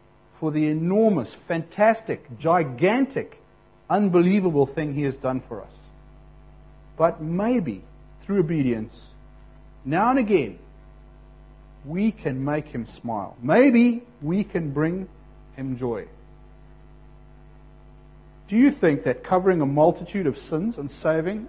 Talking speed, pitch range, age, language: 115 wpm, 140-195 Hz, 50-69, English